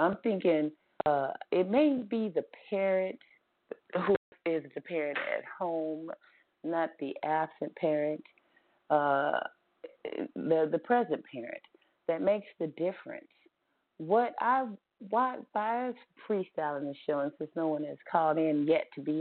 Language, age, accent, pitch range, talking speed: English, 40-59, American, 160-210 Hz, 135 wpm